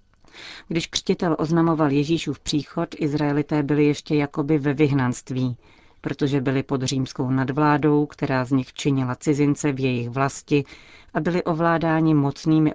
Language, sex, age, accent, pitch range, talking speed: Czech, female, 40-59, native, 130-150 Hz, 130 wpm